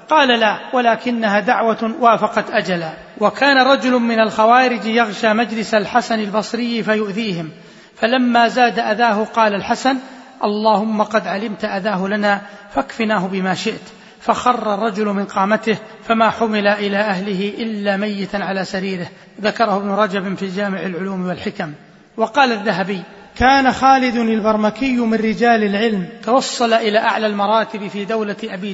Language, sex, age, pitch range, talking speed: Arabic, male, 30-49, 205-235 Hz, 130 wpm